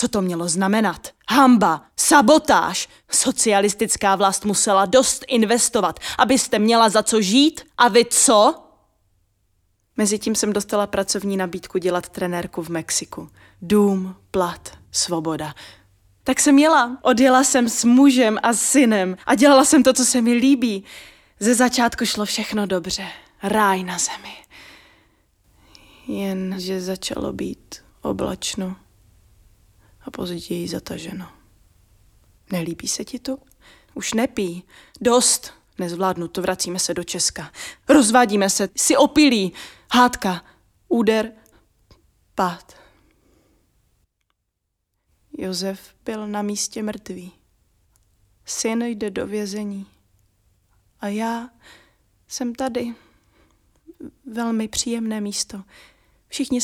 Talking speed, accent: 105 wpm, native